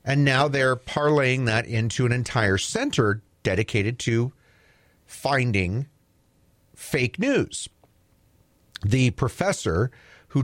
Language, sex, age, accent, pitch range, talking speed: English, male, 40-59, American, 115-160 Hz, 100 wpm